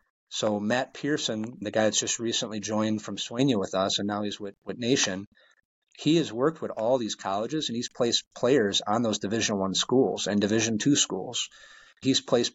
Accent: American